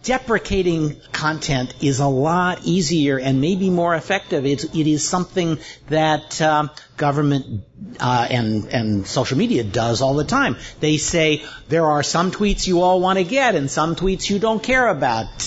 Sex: male